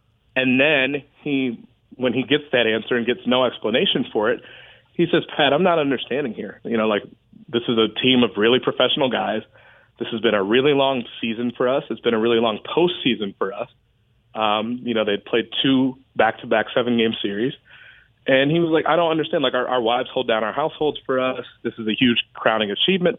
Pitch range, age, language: 115-130 Hz, 30-49, English